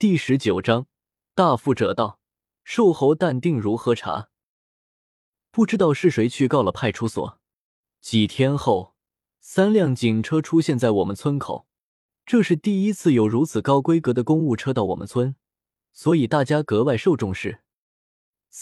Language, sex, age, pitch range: Chinese, male, 20-39, 110-165 Hz